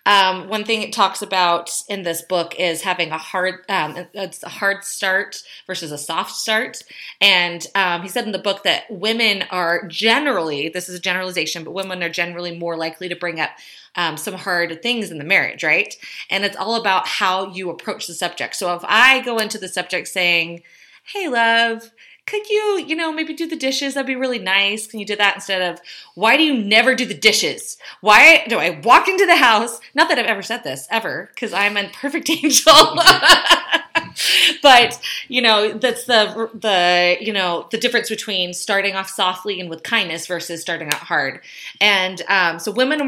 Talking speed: 200 wpm